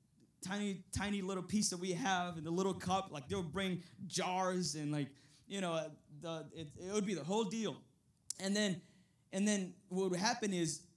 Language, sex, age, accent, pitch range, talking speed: English, male, 20-39, American, 185-255 Hz, 190 wpm